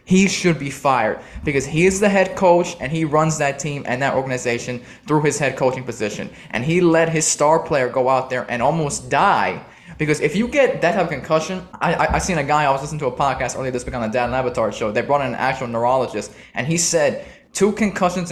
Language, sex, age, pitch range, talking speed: English, male, 20-39, 130-165 Hz, 245 wpm